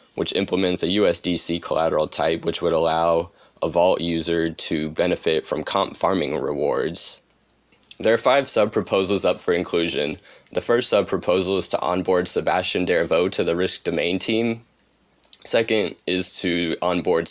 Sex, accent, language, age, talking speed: male, American, English, 20-39, 145 wpm